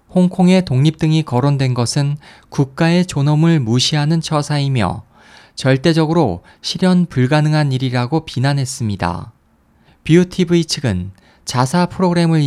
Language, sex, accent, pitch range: Korean, male, native, 125-170 Hz